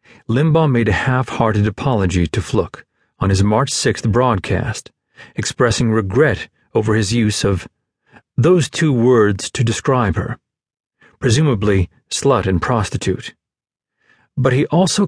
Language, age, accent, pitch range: English, 40-59, American, 105-140 Hz